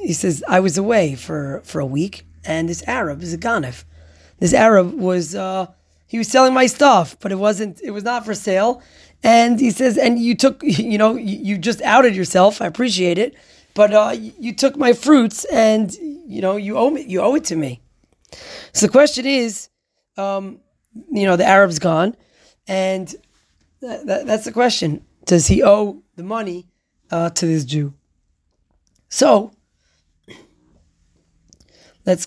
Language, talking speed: English, 175 wpm